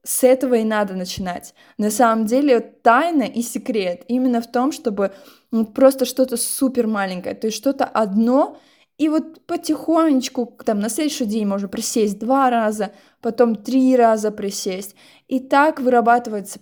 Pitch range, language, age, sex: 200-250 Hz, Russian, 20-39, female